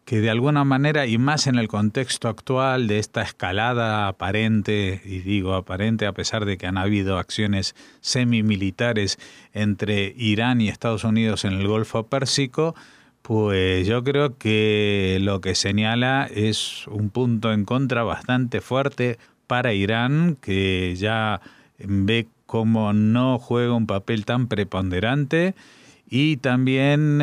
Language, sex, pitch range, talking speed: Spanish, male, 100-130 Hz, 135 wpm